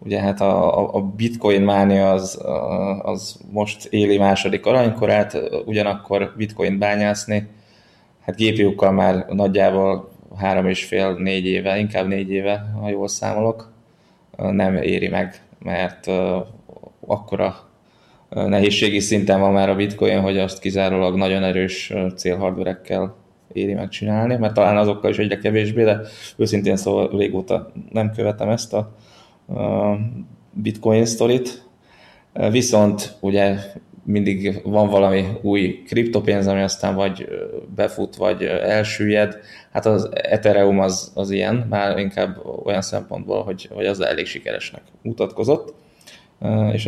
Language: Hungarian